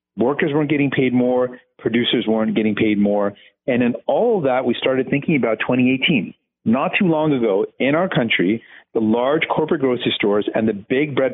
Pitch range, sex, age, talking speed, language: 115-155 Hz, male, 40-59, 190 wpm, English